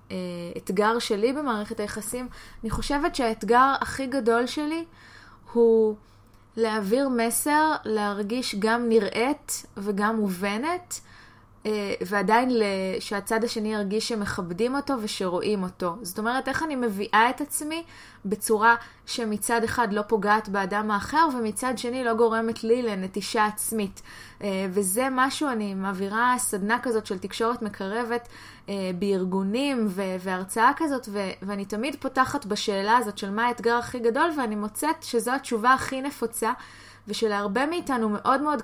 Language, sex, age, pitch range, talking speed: Hebrew, female, 20-39, 210-250 Hz, 130 wpm